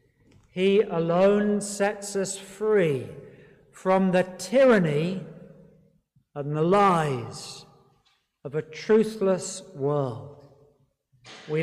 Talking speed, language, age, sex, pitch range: 85 wpm, English, 60-79, male, 145-190 Hz